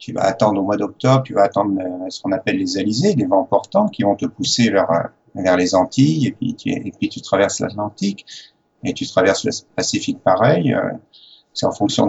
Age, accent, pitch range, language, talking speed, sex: 50-69, French, 100-135 Hz, English, 210 wpm, male